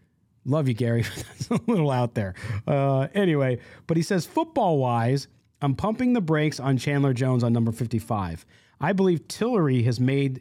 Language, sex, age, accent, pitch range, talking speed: English, male, 40-59, American, 120-165 Hz, 165 wpm